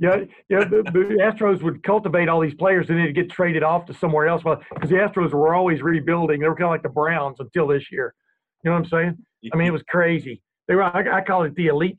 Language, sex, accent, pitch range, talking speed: English, male, American, 150-185 Hz, 255 wpm